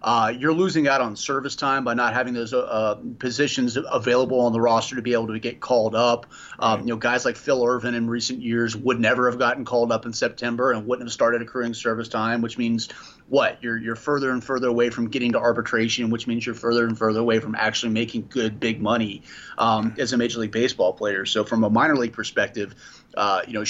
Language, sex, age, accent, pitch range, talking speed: English, male, 30-49, American, 110-125 Hz, 230 wpm